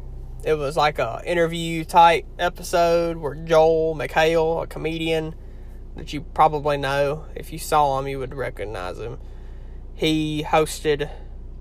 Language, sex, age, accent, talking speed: English, male, 20-39, American, 130 wpm